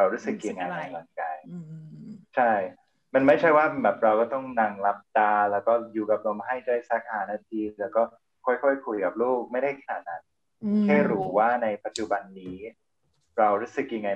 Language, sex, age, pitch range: Thai, male, 20-39, 105-150 Hz